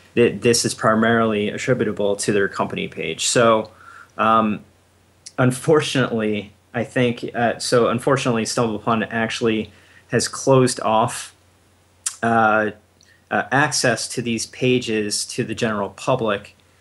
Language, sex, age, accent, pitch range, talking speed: English, male, 30-49, American, 105-125 Hz, 115 wpm